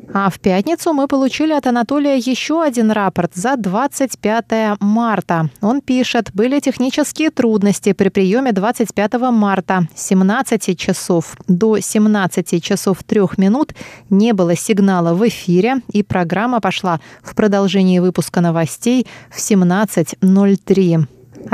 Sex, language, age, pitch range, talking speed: female, Russian, 20-39, 180-235 Hz, 120 wpm